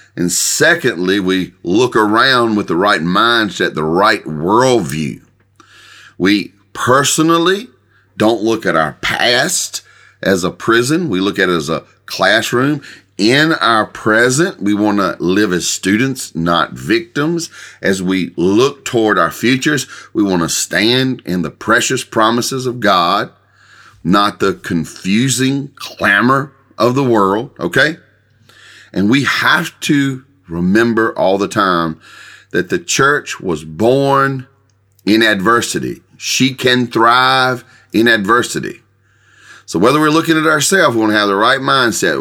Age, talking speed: 40-59, 140 wpm